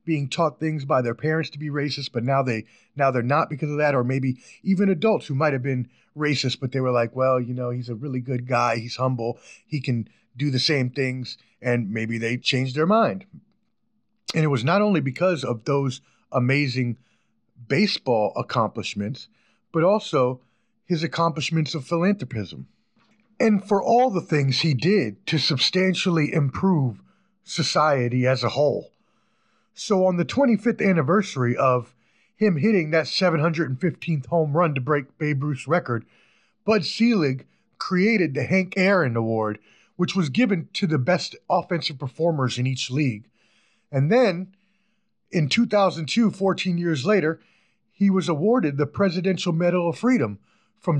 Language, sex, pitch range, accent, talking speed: English, male, 130-190 Hz, American, 160 wpm